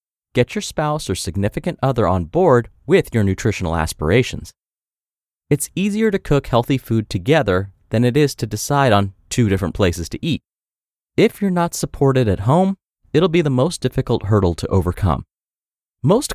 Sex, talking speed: male, 165 wpm